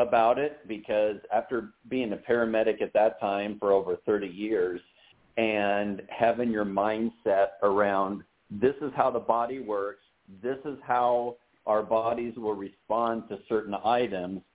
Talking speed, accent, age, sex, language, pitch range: 145 wpm, American, 50-69, male, English, 100-120 Hz